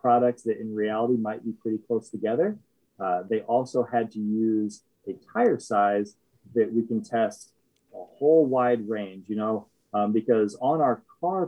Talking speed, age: 170 wpm, 20-39